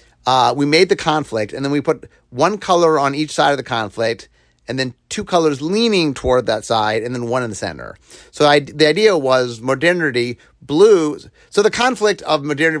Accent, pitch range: American, 115-155 Hz